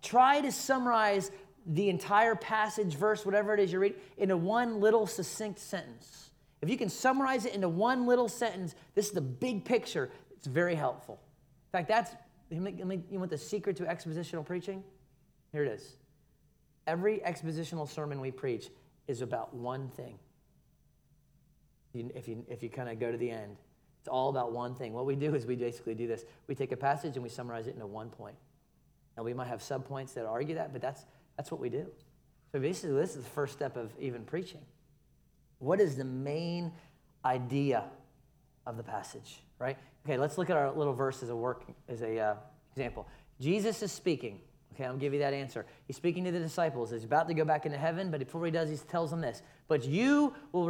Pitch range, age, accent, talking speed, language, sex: 135-190 Hz, 30-49, American, 200 wpm, English, male